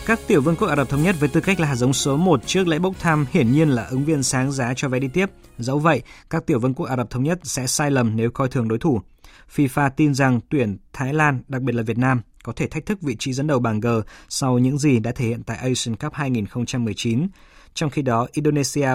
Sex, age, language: male, 20-39, Vietnamese